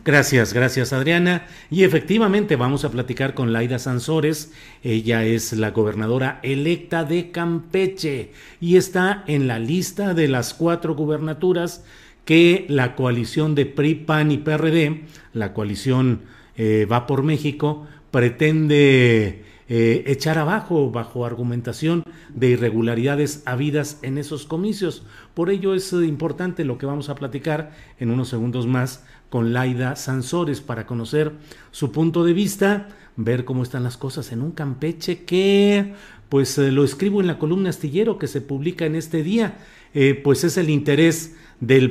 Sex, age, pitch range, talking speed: male, 40-59, 125-170 Hz, 150 wpm